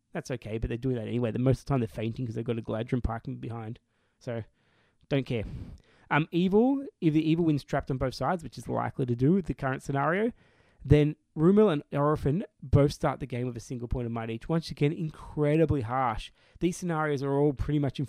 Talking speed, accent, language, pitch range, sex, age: 230 wpm, Australian, English, 120-150 Hz, male, 20-39